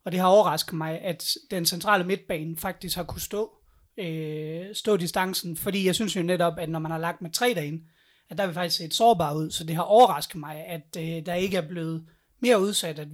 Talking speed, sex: 235 wpm, male